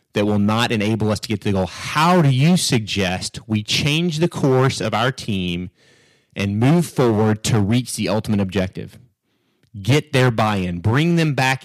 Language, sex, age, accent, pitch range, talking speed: English, male, 30-49, American, 105-145 Hz, 180 wpm